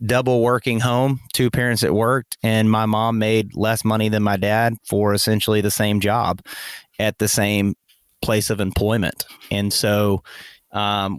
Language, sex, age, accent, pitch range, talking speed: English, male, 30-49, American, 105-115 Hz, 160 wpm